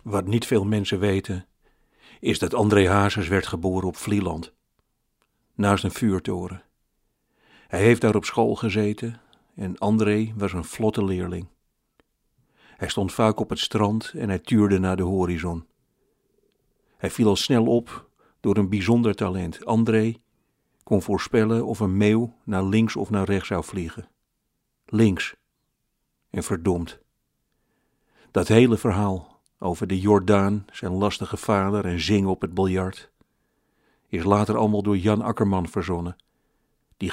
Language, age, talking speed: Dutch, 50-69, 140 wpm